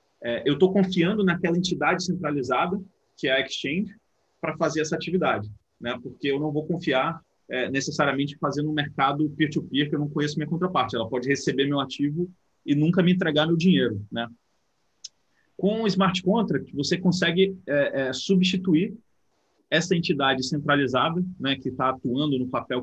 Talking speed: 165 wpm